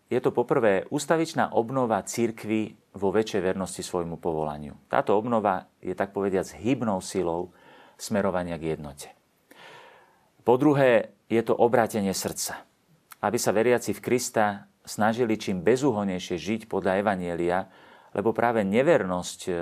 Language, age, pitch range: Slovak, 40-59, 90-120 Hz